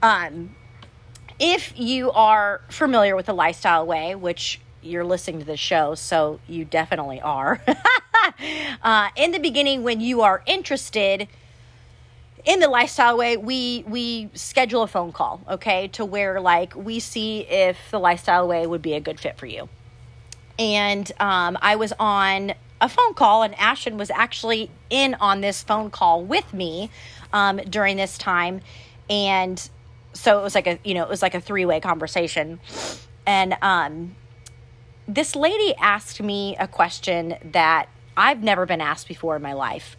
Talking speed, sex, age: 160 wpm, female, 30-49